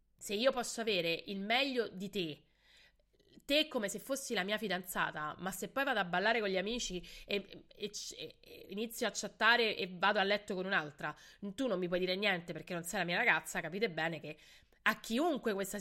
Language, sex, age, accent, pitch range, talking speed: Italian, female, 30-49, native, 170-220 Hz, 210 wpm